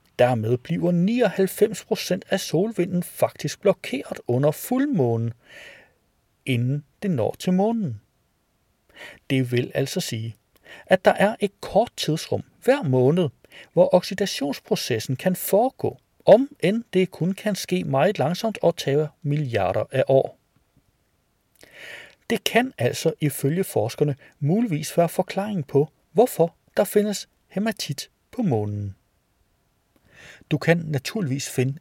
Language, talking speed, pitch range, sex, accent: Danish, 115 wpm, 130-210 Hz, male, native